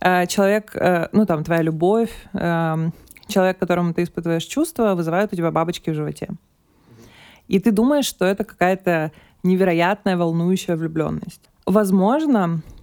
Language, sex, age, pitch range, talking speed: Russian, female, 20-39, 170-200 Hz, 120 wpm